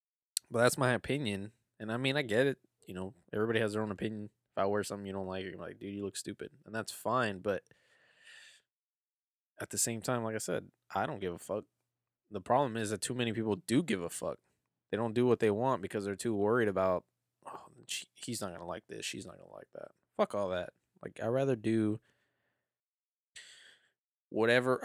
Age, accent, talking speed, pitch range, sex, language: 20-39, American, 215 wpm, 100-120 Hz, male, English